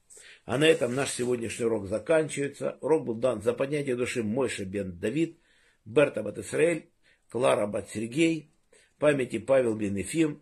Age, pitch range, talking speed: 50-69, 105-150 Hz, 150 wpm